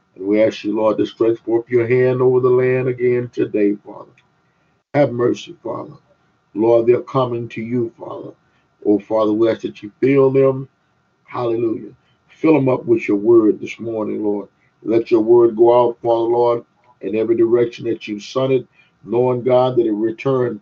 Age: 50-69